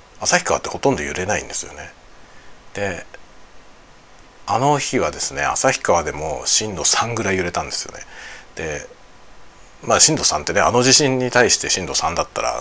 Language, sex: Japanese, male